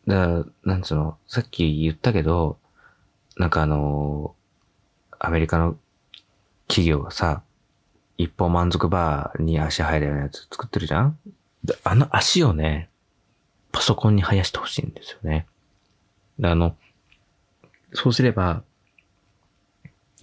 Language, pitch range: Japanese, 80-110 Hz